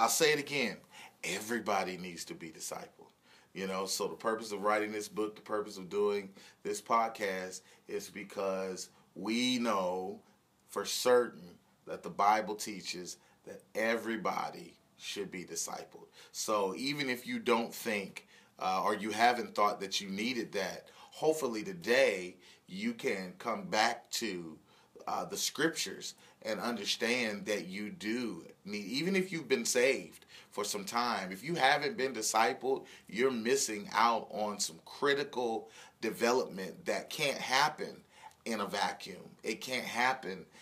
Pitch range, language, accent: 105-135 Hz, English, American